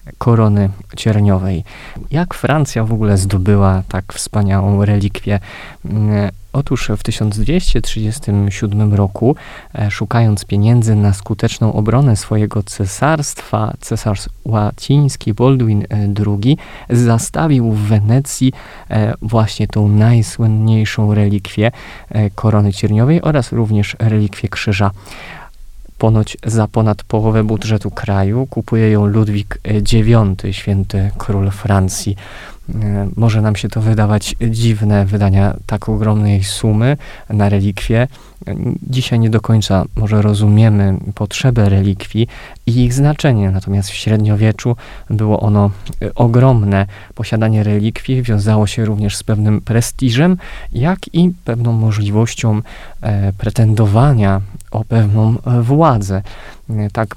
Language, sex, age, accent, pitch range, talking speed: Polish, male, 20-39, native, 100-115 Hz, 100 wpm